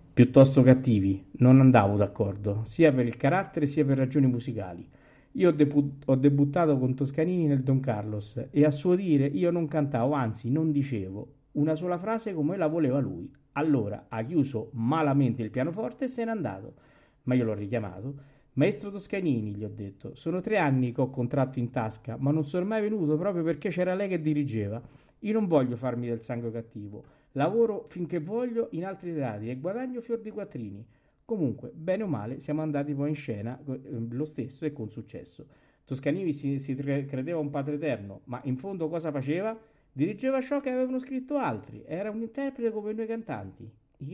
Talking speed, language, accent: 180 wpm, Italian, native